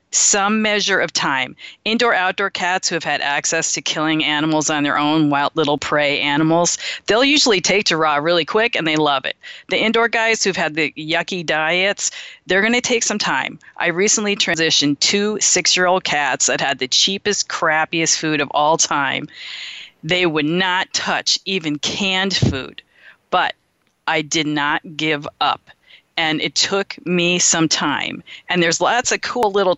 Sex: female